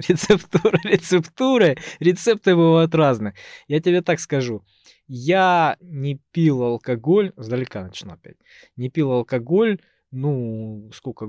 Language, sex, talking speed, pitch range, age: Russian, male, 110 wpm, 115-165 Hz, 20-39